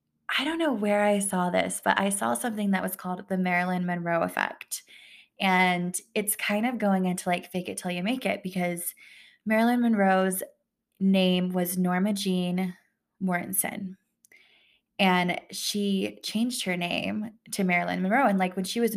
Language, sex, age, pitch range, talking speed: English, female, 20-39, 180-205 Hz, 165 wpm